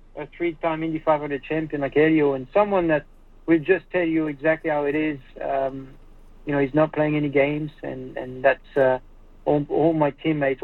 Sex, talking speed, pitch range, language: male, 190 wpm, 140-160 Hz, English